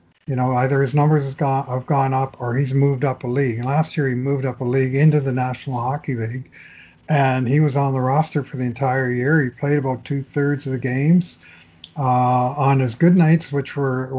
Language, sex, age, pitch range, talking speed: English, male, 60-79, 125-145 Hz, 215 wpm